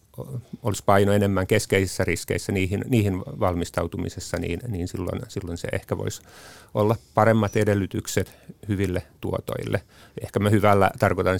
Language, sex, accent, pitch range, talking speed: Finnish, male, native, 95-115 Hz, 125 wpm